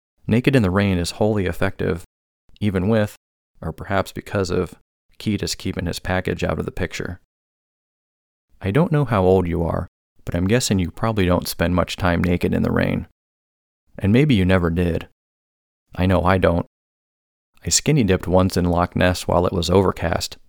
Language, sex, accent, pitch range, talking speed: English, male, American, 85-100 Hz, 175 wpm